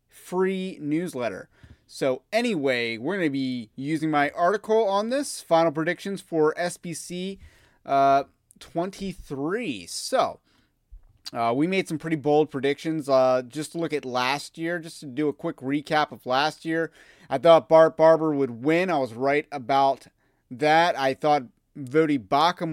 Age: 30-49